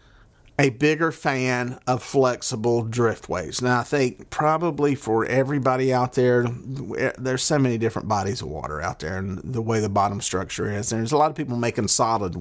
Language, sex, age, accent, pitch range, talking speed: English, male, 40-59, American, 110-130 Hz, 180 wpm